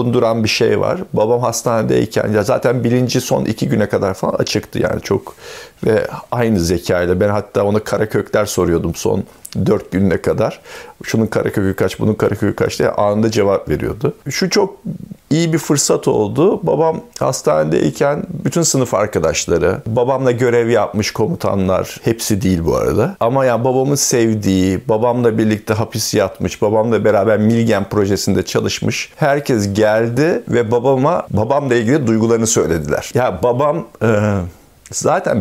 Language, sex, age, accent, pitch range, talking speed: Turkish, male, 50-69, native, 105-140 Hz, 145 wpm